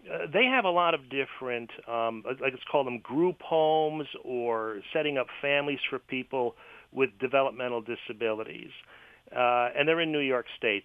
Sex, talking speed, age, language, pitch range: male, 160 wpm, 40-59, English, 115-140 Hz